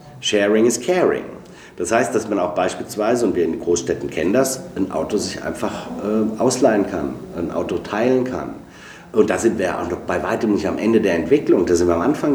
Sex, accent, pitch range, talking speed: male, German, 105-130 Hz, 220 wpm